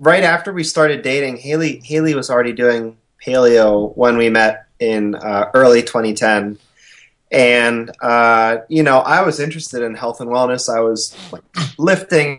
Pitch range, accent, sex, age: 105-125 Hz, American, male, 30-49